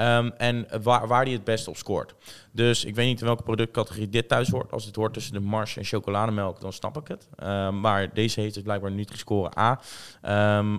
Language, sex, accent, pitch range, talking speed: Dutch, male, Dutch, 100-115 Hz, 230 wpm